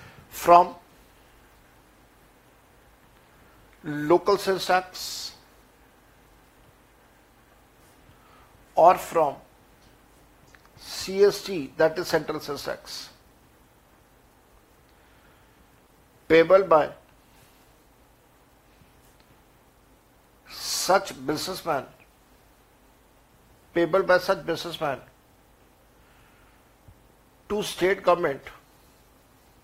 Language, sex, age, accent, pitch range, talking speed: Hindi, male, 60-79, native, 170-210 Hz, 55 wpm